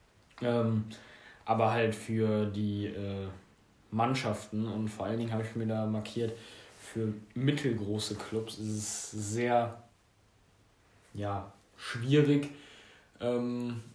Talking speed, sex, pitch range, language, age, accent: 100 wpm, male, 105-120 Hz, German, 10-29, German